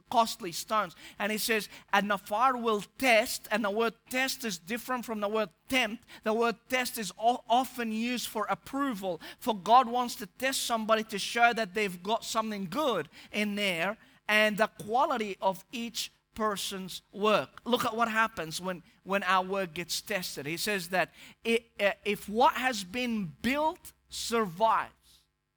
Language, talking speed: English, 165 wpm